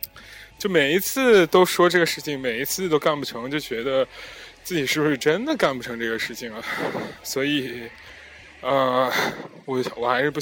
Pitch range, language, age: 120-170 Hz, Chinese, 20-39